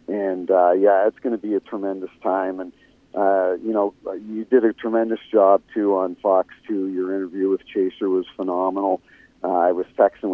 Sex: male